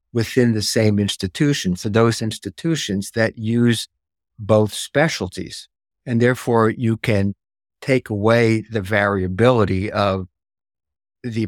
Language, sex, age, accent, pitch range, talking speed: English, male, 60-79, American, 100-120 Hz, 110 wpm